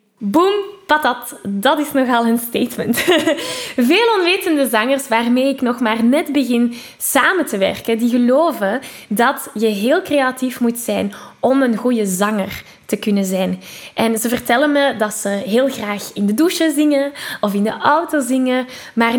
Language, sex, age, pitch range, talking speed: Dutch, female, 10-29, 215-290 Hz, 165 wpm